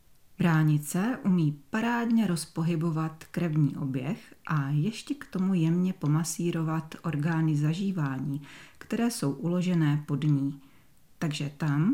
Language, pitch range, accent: Czech, 145-190 Hz, native